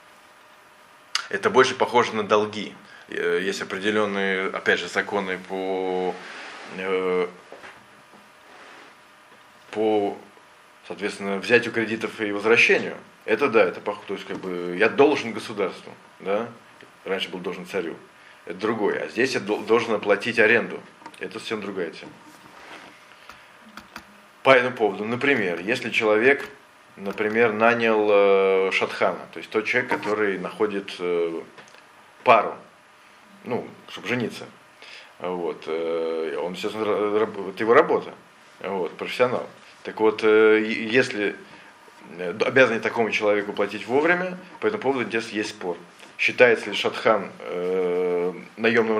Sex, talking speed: male, 105 wpm